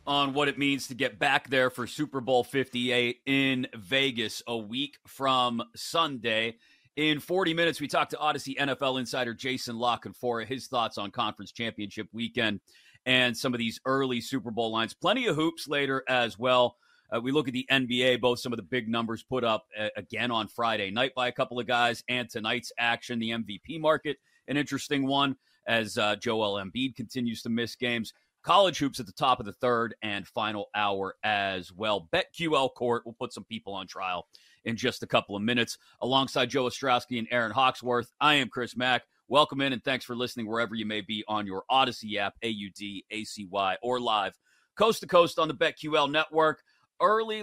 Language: English